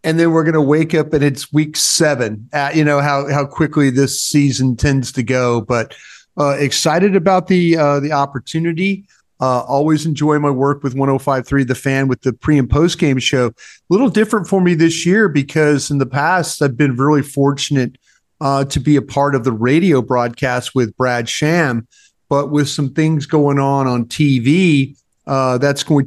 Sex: male